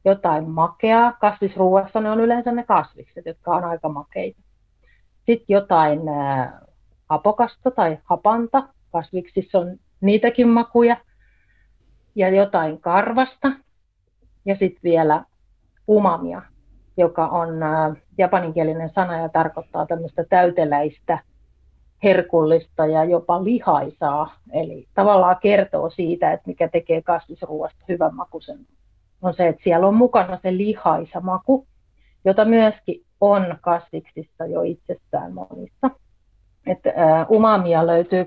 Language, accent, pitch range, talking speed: Finnish, native, 160-200 Hz, 115 wpm